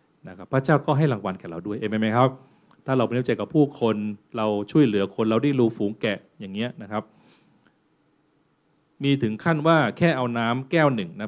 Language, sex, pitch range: Thai, male, 115-155 Hz